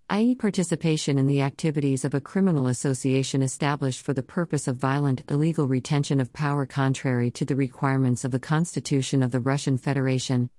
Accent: American